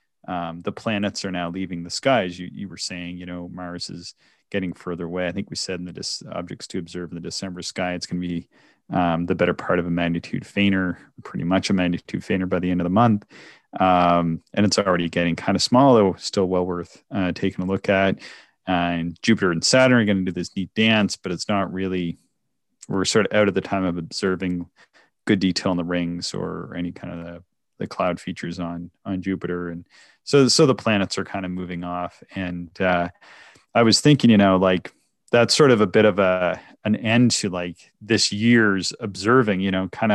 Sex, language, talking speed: male, English, 225 wpm